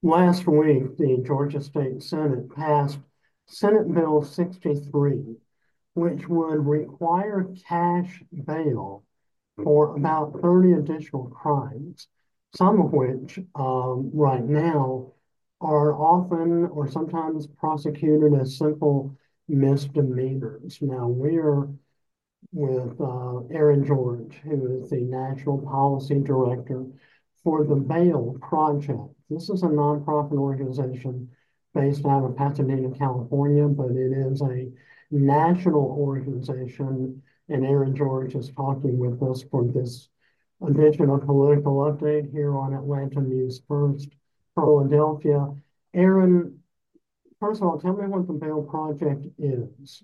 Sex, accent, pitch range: male, American, 135-155 Hz